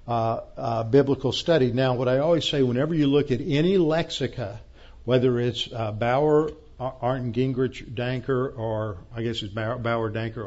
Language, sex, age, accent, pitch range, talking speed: English, male, 50-69, American, 115-140 Hz, 165 wpm